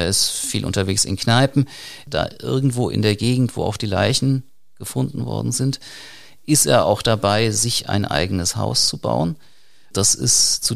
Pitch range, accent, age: 100-125 Hz, German, 40-59